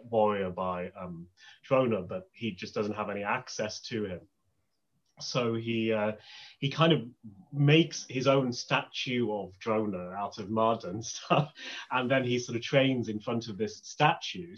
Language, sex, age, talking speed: English, male, 30-49, 170 wpm